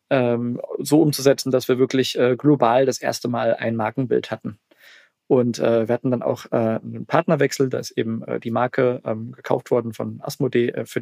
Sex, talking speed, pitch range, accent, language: male, 160 wpm, 120-135 Hz, German, German